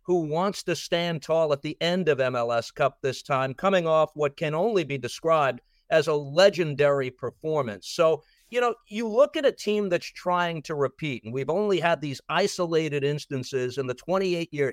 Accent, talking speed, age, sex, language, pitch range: American, 190 wpm, 50-69, male, English, 135-175 Hz